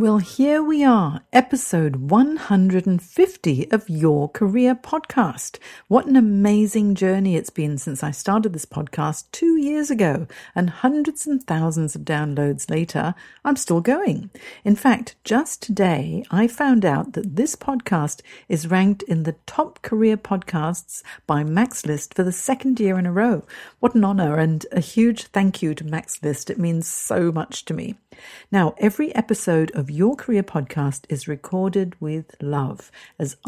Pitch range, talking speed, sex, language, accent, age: 155-225 Hz, 160 wpm, female, English, British, 50-69